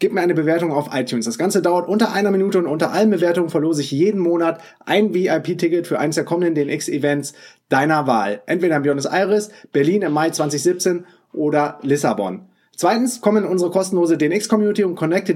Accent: German